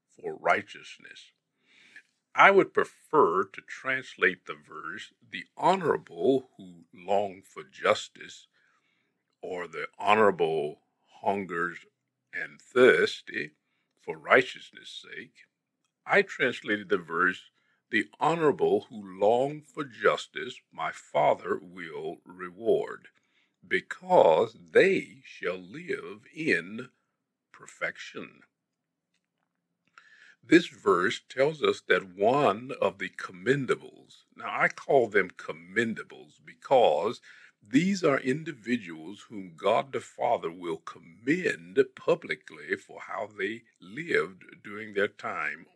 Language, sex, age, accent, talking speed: English, male, 60-79, American, 100 wpm